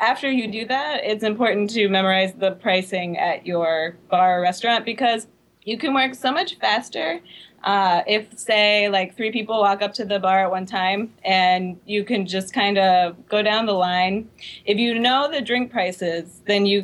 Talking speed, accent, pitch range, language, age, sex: 190 wpm, American, 190-225 Hz, English, 20-39, female